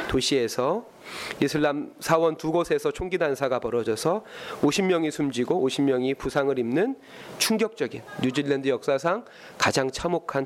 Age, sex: 30-49, male